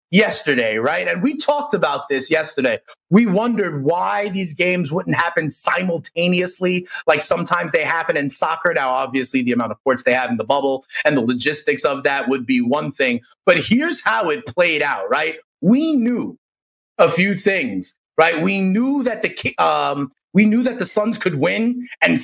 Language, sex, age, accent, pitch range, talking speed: English, male, 30-49, American, 160-220 Hz, 185 wpm